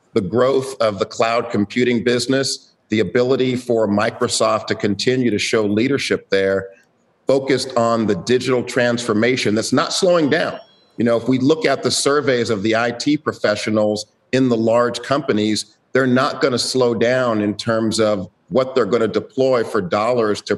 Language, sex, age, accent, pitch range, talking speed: English, male, 50-69, American, 105-125 Hz, 170 wpm